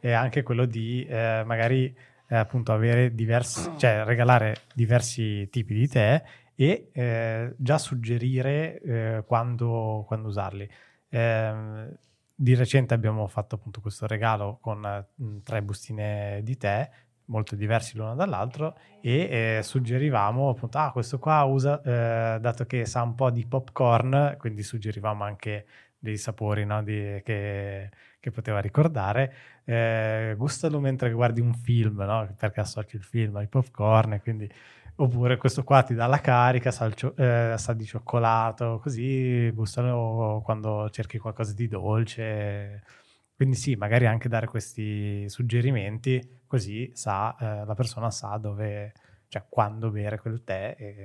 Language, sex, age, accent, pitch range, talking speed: Italian, male, 20-39, native, 110-125 Hz, 140 wpm